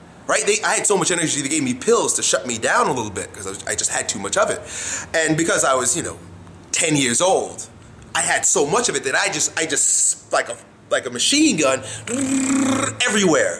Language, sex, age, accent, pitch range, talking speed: English, male, 30-49, American, 120-185 Hz, 240 wpm